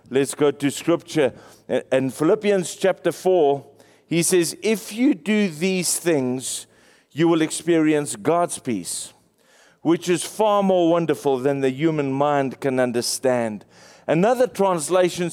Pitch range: 150-195 Hz